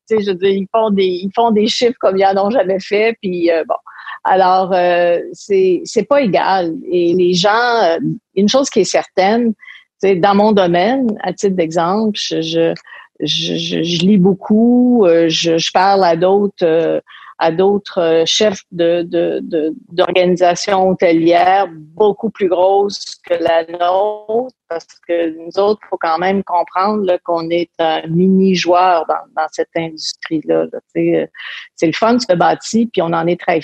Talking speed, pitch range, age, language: 170 wpm, 170-210 Hz, 50-69, French